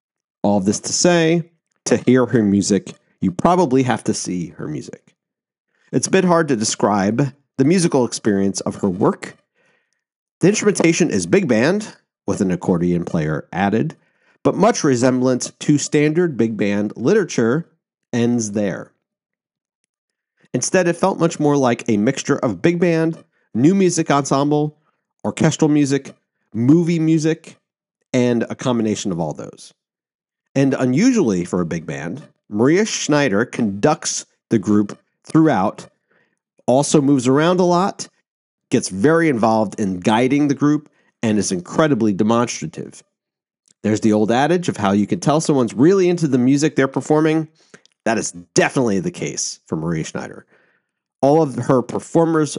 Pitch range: 115-165 Hz